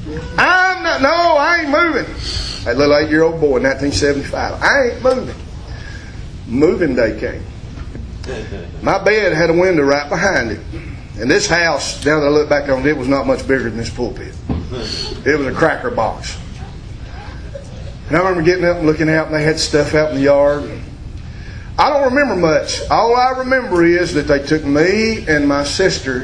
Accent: American